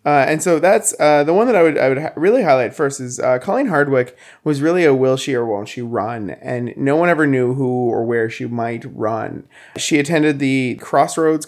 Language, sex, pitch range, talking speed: English, male, 120-145 Hz, 230 wpm